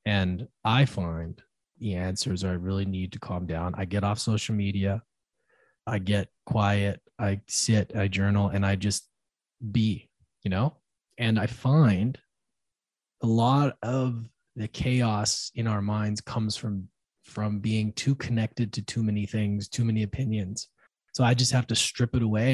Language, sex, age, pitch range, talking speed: English, male, 20-39, 100-125 Hz, 165 wpm